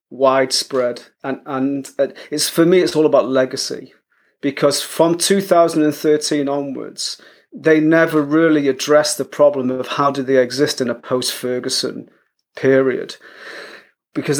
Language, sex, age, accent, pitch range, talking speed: English, male, 30-49, British, 130-155 Hz, 125 wpm